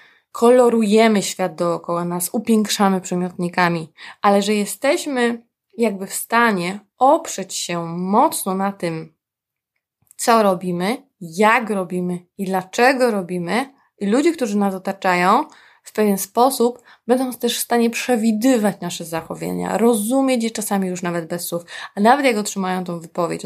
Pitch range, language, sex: 180-235 Hz, Polish, female